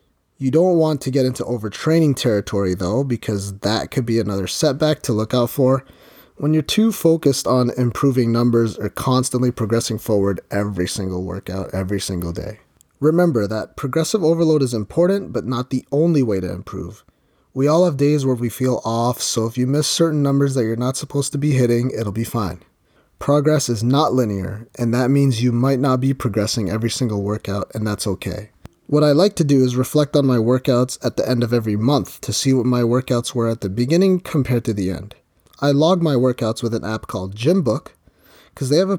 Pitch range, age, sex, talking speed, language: 110-145 Hz, 30-49, male, 205 wpm, English